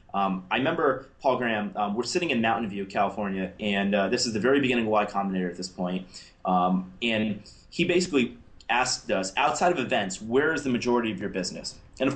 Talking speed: 215 wpm